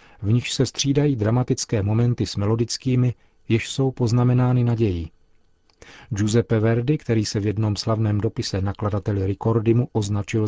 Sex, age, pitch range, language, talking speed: male, 40-59, 105-125 Hz, Czech, 135 wpm